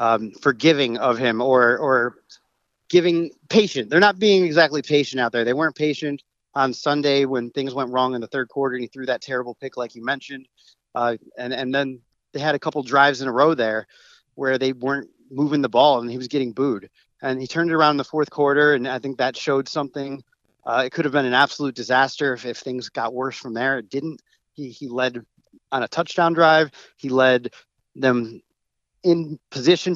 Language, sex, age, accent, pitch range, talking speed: English, male, 30-49, American, 125-150 Hz, 210 wpm